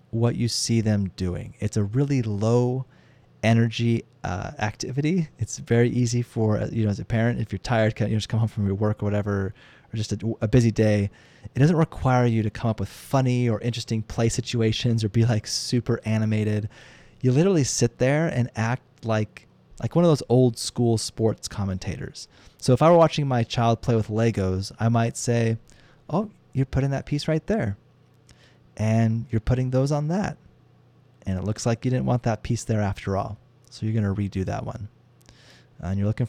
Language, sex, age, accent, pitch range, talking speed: English, male, 30-49, American, 110-135 Hz, 195 wpm